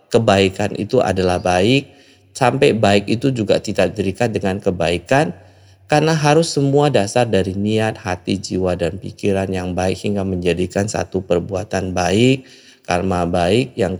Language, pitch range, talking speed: Indonesian, 95-115 Hz, 135 wpm